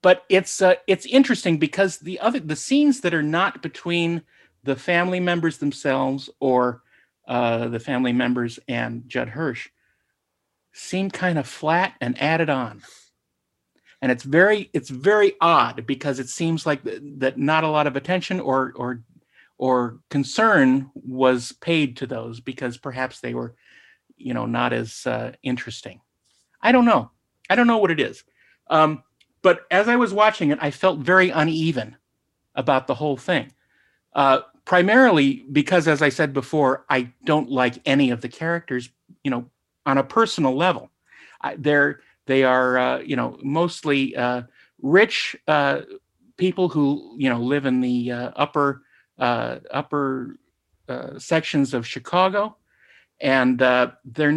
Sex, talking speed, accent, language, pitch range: male, 155 wpm, American, English, 130-175 Hz